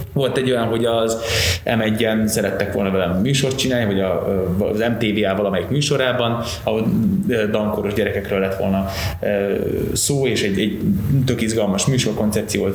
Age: 20-39